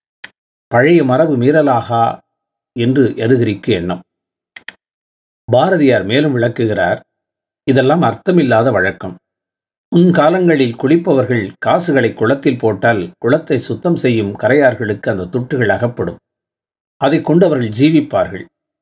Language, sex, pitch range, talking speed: Tamil, male, 105-135 Hz, 90 wpm